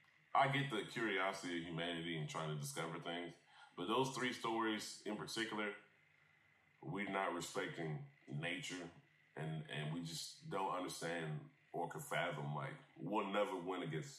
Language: English